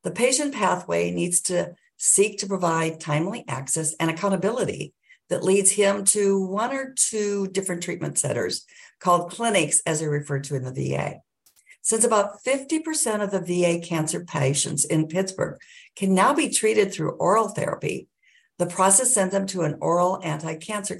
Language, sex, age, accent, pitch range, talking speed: English, female, 60-79, American, 160-205 Hz, 160 wpm